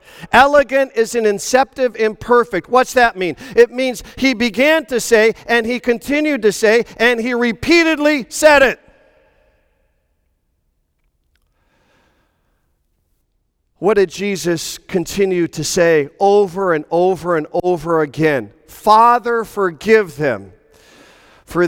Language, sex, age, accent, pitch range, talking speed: English, male, 50-69, American, 180-265 Hz, 110 wpm